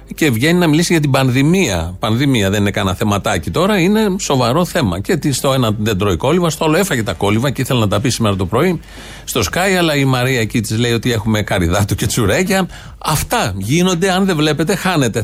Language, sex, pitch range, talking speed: Greek, male, 110-155 Hz, 215 wpm